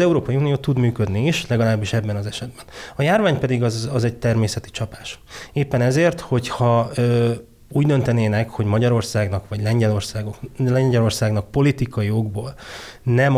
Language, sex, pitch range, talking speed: Hungarian, male, 105-125 Hz, 145 wpm